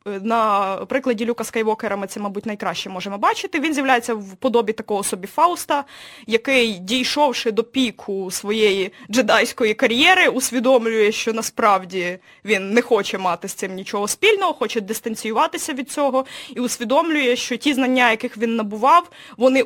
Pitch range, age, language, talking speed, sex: 205-265 Hz, 20-39, Russian, 145 wpm, female